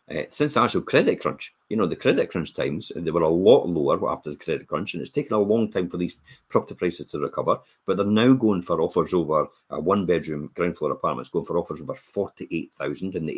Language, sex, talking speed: English, male, 240 wpm